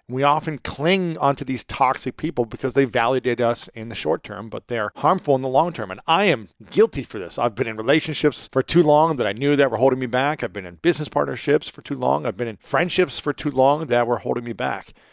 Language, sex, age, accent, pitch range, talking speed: English, male, 40-59, American, 115-155 Hz, 250 wpm